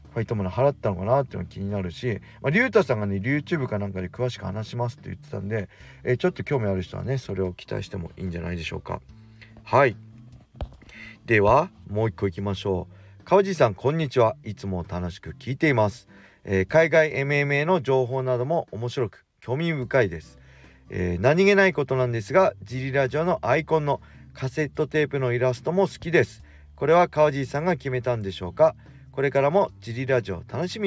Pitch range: 100-140 Hz